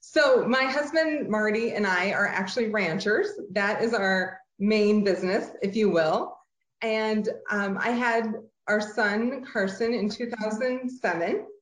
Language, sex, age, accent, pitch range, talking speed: English, female, 30-49, American, 205-250 Hz, 135 wpm